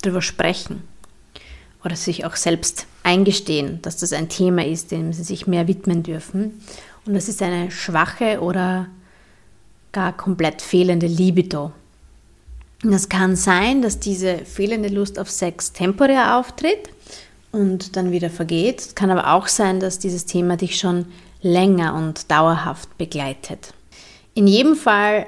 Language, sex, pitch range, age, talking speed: German, female, 170-200 Hz, 30-49, 140 wpm